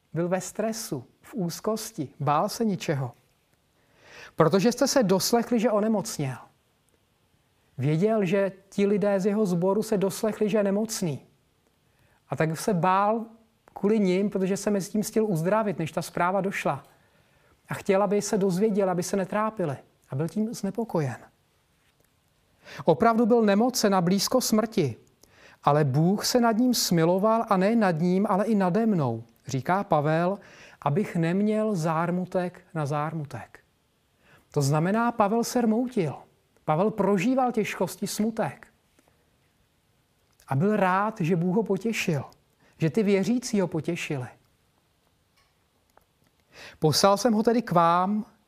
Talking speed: 135 wpm